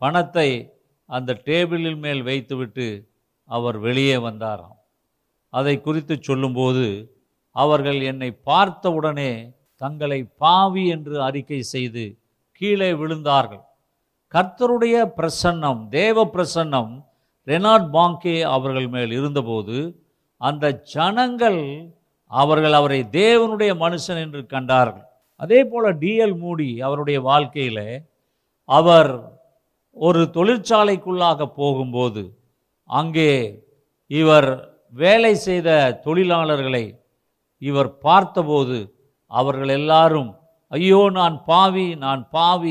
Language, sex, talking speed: Tamil, male, 85 wpm